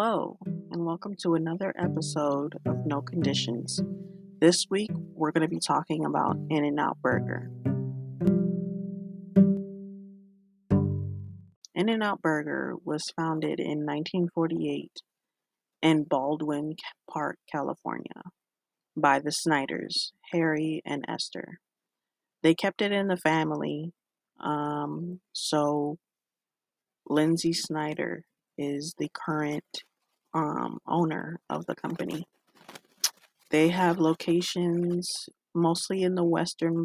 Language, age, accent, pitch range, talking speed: English, 30-49, American, 150-175 Hz, 105 wpm